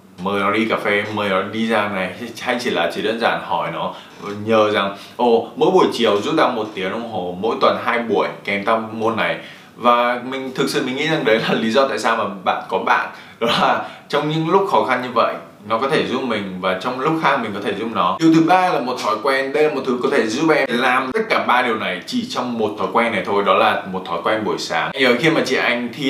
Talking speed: 275 wpm